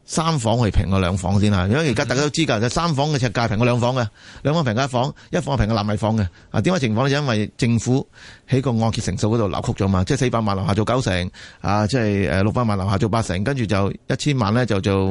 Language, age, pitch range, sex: Chinese, 30-49, 100-130 Hz, male